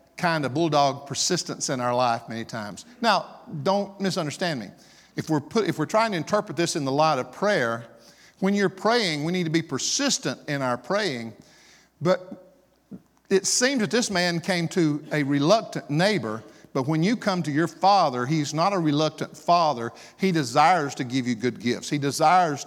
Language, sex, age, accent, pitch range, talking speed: English, male, 50-69, American, 140-195 Hz, 185 wpm